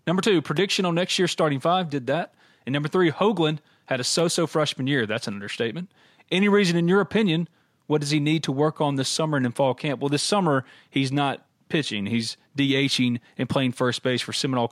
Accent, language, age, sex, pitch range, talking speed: American, English, 30-49, male, 125-165 Hz, 220 wpm